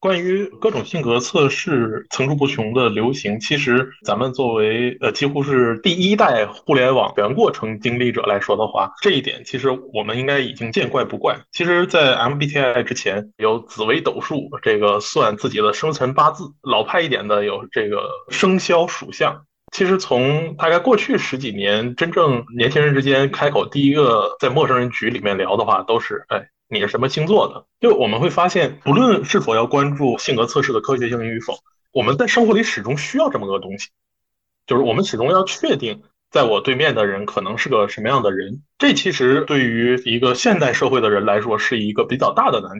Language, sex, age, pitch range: Chinese, male, 20-39, 120-170 Hz